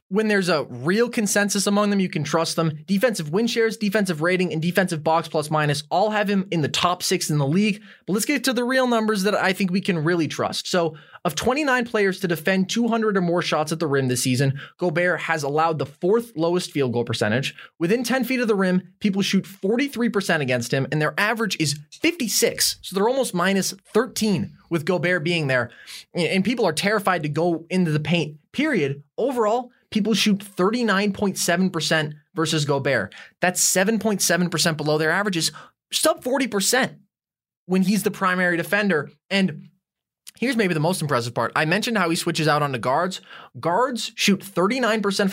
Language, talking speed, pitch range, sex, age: English, 185 wpm, 155-205 Hz, male, 20-39